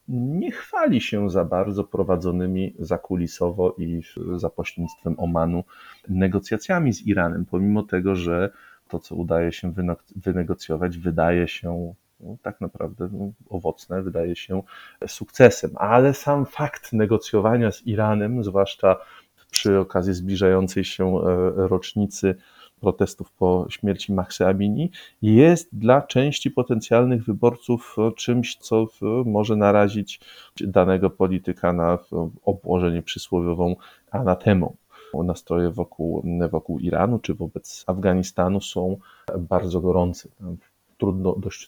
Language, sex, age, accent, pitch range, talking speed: Polish, male, 30-49, native, 90-105 Hz, 105 wpm